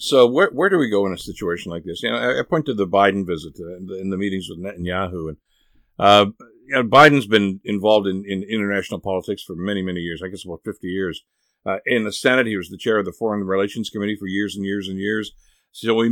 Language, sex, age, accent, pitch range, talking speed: English, male, 50-69, American, 95-115 Hz, 260 wpm